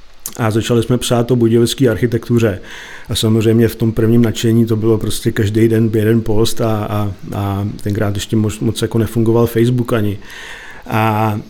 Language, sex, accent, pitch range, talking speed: Czech, male, native, 110-120 Hz, 165 wpm